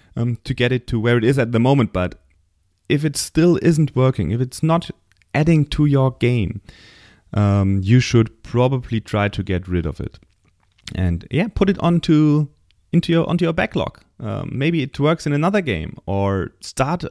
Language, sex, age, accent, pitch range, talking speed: English, male, 30-49, German, 95-130 Hz, 185 wpm